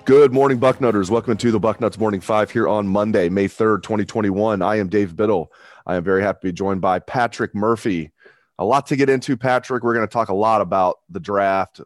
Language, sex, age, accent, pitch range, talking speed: English, male, 30-49, American, 105-130 Hz, 225 wpm